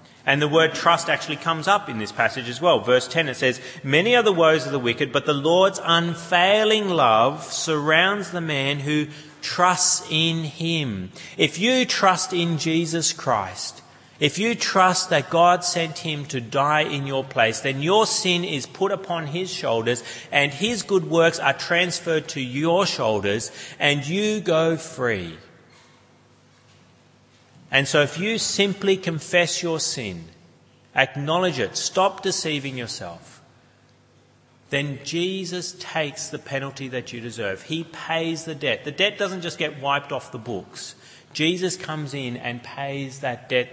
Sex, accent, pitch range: male, Australian, 130-175 Hz